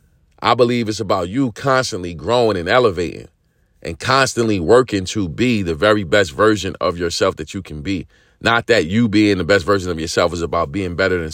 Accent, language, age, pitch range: American, English, 40-59, 100-130 Hz